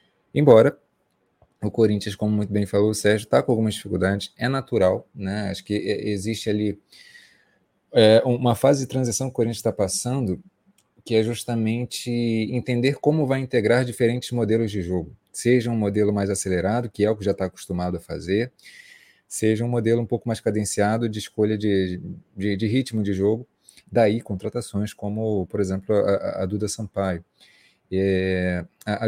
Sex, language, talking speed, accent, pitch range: male, Portuguese, 165 wpm, Brazilian, 100-120 Hz